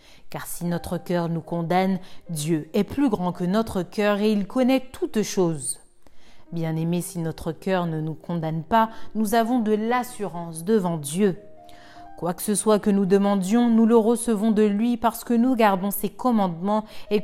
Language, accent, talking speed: French, French, 180 wpm